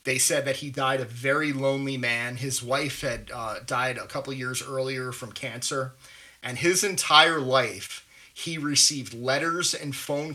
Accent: American